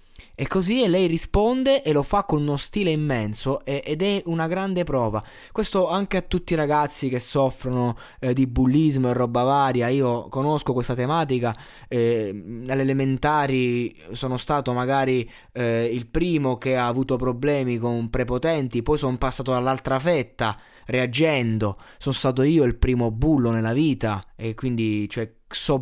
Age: 20-39